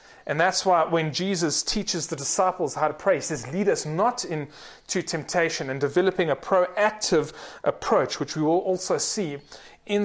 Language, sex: English, male